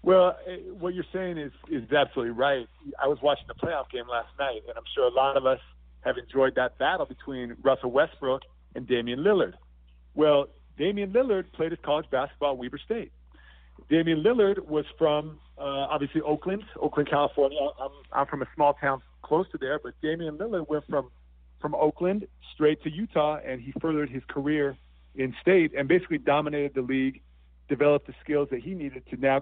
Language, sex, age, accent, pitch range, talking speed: English, male, 40-59, American, 120-160 Hz, 185 wpm